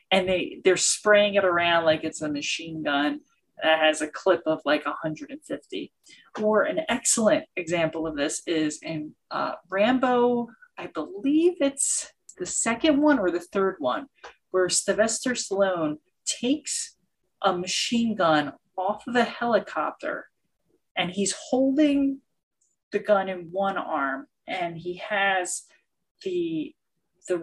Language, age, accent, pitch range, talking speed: English, 30-49, American, 170-245 Hz, 135 wpm